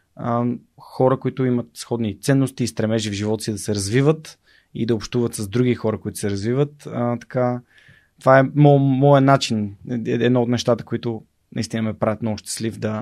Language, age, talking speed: Bulgarian, 30-49, 185 wpm